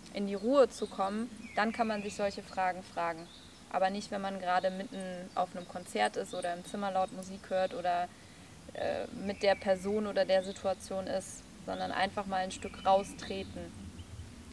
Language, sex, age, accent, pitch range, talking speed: Danish, female, 20-39, German, 185-215 Hz, 180 wpm